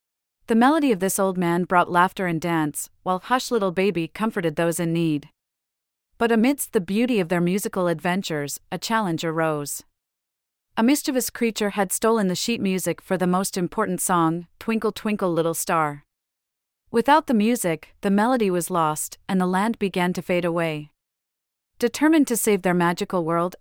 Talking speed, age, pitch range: 170 wpm, 40-59, 165-210 Hz